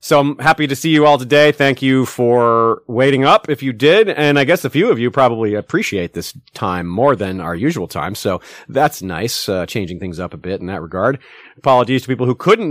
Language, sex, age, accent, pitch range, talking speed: English, male, 30-49, American, 105-150 Hz, 230 wpm